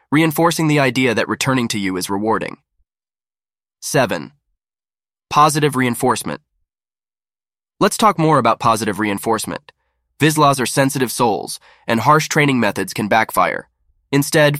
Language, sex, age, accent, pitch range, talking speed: English, male, 20-39, American, 100-145 Hz, 120 wpm